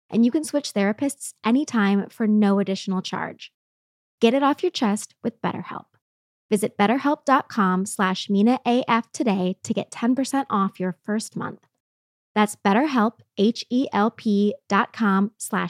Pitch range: 200-255 Hz